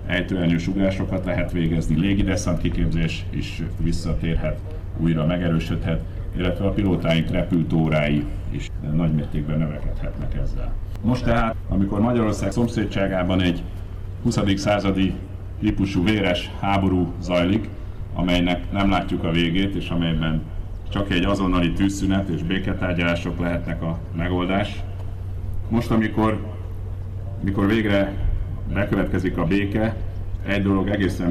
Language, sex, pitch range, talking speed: Hungarian, male, 90-100 Hz, 110 wpm